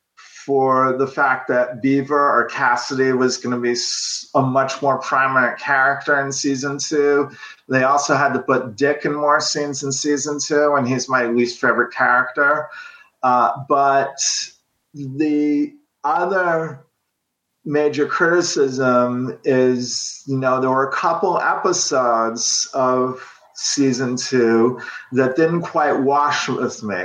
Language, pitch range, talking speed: English, 125-150 Hz, 135 wpm